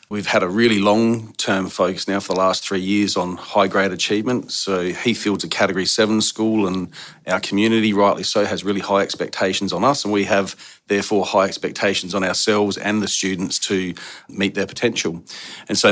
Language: English